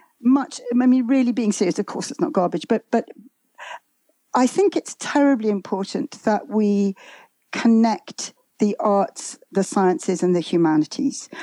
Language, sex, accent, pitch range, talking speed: English, female, British, 190-250 Hz, 145 wpm